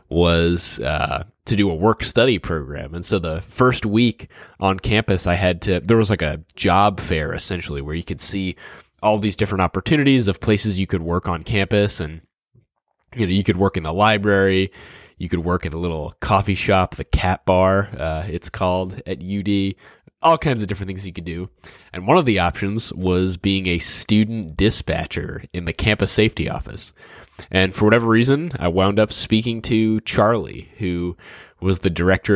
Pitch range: 85-105 Hz